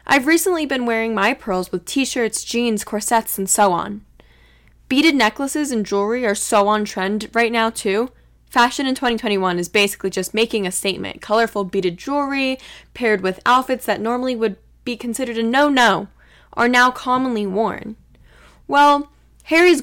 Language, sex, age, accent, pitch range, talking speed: English, female, 10-29, American, 190-255 Hz, 165 wpm